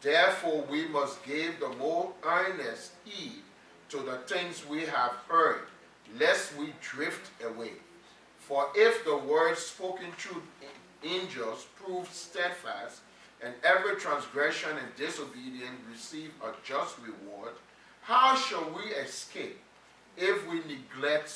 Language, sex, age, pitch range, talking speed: English, male, 40-59, 140-190 Hz, 120 wpm